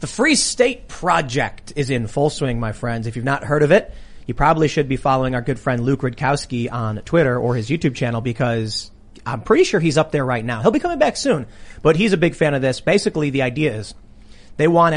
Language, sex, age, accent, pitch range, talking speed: English, male, 30-49, American, 130-180 Hz, 235 wpm